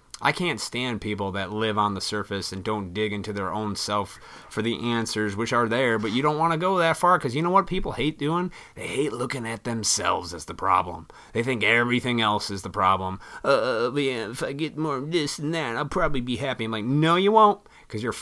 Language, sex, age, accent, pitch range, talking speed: English, male, 30-49, American, 105-155 Hz, 235 wpm